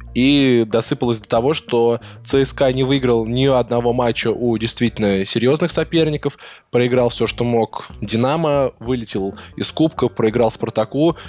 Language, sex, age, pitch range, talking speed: Russian, male, 10-29, 105-130 Hz, 135 wpm